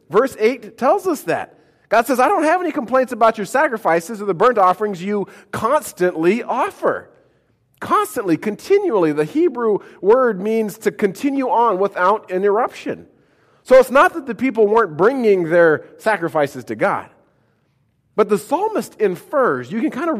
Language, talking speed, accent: English, 160 wpm, American